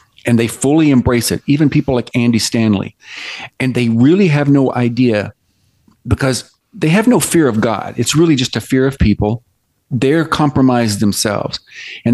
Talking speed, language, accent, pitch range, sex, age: 170 wpm, English, American, 115-140 Hz, male, 40-59